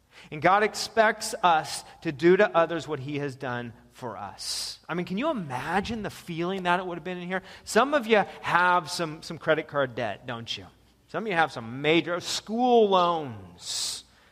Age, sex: 30-49, male